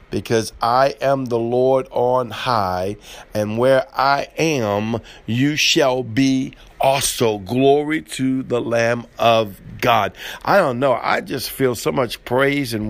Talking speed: 145 wpm